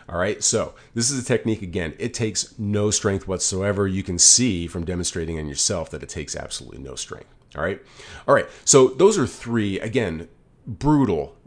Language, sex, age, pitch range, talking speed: English, male, 40-59, 90-115 Hz, 190 wpm